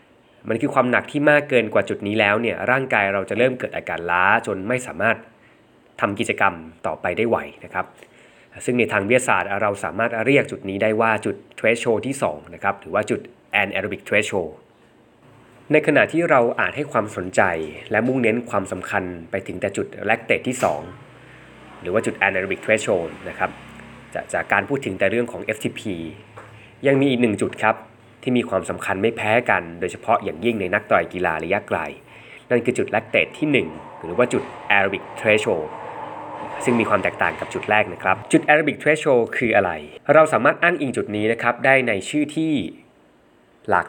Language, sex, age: Thai, male, 20-39